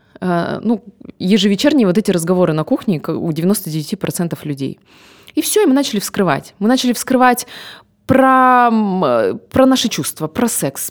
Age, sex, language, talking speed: 20-39, female, Russian, 140 wpm